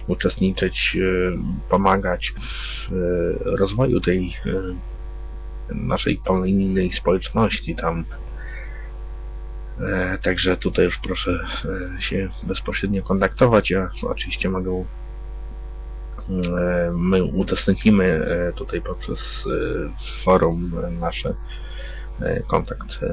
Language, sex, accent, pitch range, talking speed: Polish, male, native, 85-100 Hz, 70 wpm